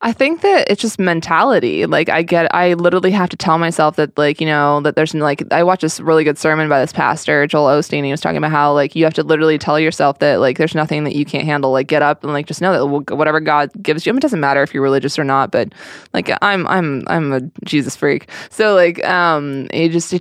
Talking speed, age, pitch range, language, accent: 265 wpm, 20-39, 150-175 Hz, English, American